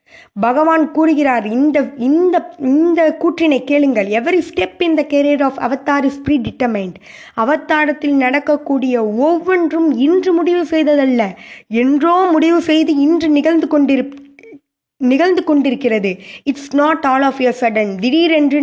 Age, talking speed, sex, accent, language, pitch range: 20-39, 105 wpm, female, native, Tamil, 235-310 Hz